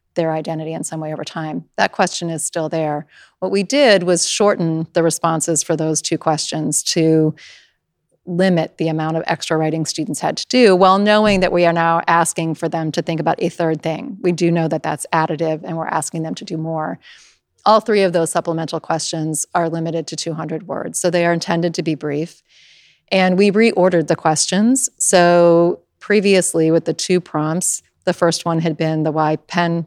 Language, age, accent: English, 30-49, American